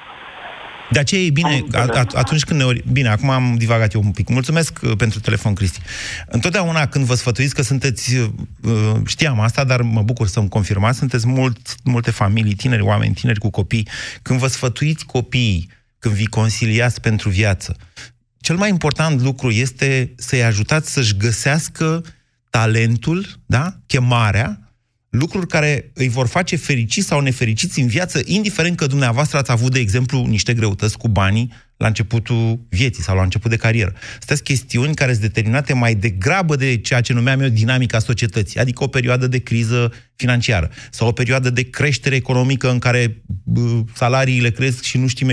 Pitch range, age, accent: 115-140 Hz, 30-49, native